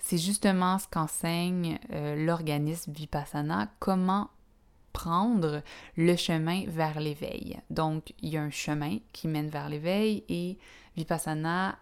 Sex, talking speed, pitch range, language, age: female, 120 wpm, 160-195 Hz, French, 20-39